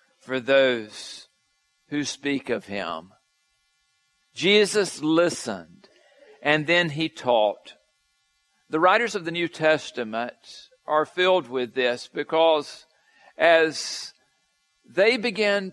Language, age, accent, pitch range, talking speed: English, 50-69, American, 145-165 Hz, 100 wpm